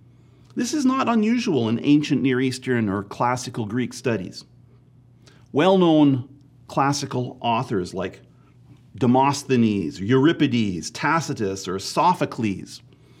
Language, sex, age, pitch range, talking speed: English, male, 40-59, 120-155 Hz, 95 wpm